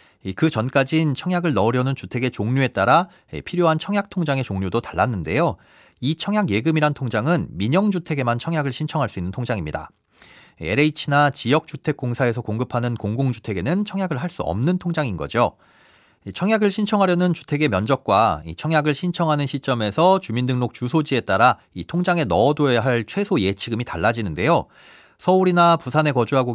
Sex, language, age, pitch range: male, Korean, 40-59, 115-175 Hz